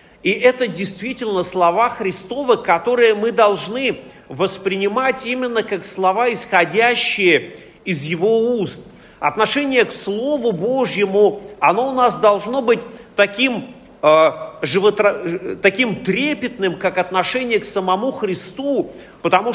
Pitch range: 185-245 Hz